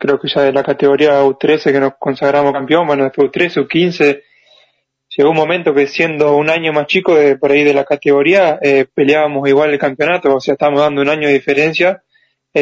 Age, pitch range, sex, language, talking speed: 20-39, 140-155 Hz, male, Spanish, 210 wpm